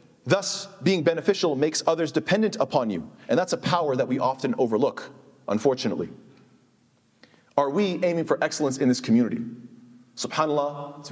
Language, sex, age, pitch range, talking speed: English, male, 40-59, 145-190 Hz, 145 wpm